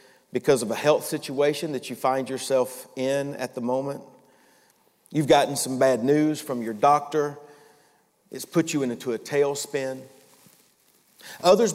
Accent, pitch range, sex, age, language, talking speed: American, 130-145 Hz, male, 40-59, English, 145 wpm